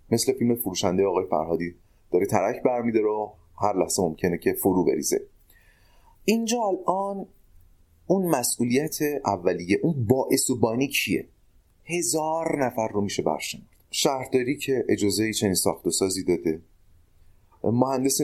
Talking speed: 125 wpm